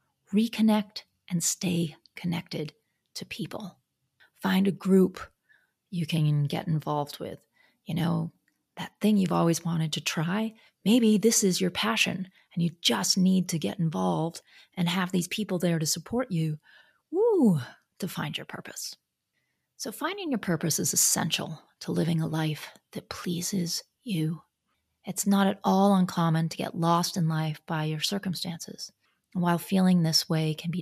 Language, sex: English, female